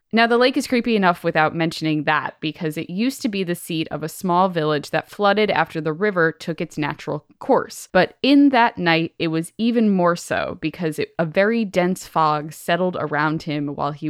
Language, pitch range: English, 155-205 Hz